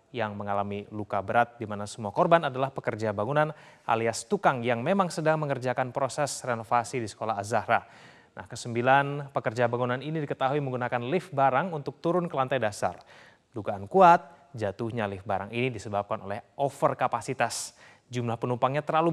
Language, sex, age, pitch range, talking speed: Indonesian, male, 30-49, 115-150 Hz, 150 wpm